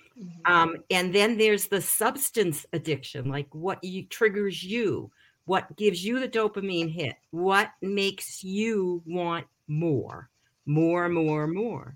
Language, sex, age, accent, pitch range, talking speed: English, female, 50-69, American, 155-195 Hz, 125 wpm